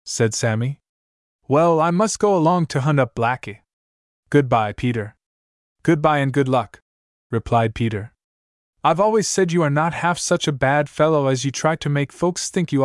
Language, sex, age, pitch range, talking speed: English, male, 20-39, 110-140 Hz, 175 wpm